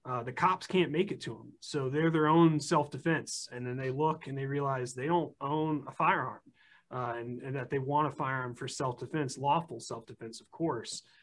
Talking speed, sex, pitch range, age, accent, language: 210 wpm, male, 125-150 Hz, 30-49, American, English